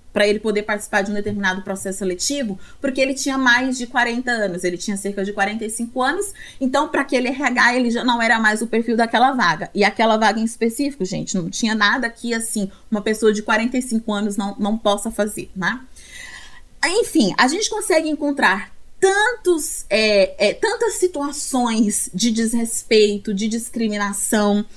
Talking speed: 170 wpm